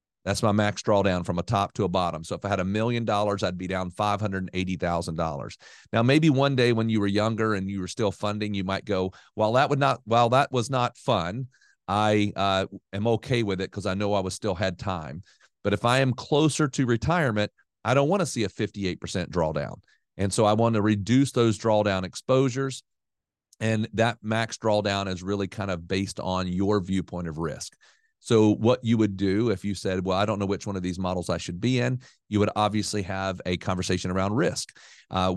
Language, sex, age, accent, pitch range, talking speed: English, male, 40-59, American, 95-115 Hz, 230 wpm